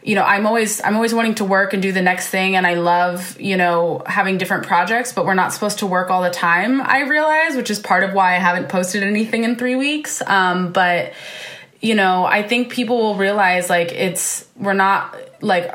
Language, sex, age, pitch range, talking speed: English, female, 20-39, 175-205 Hz, 225 wpm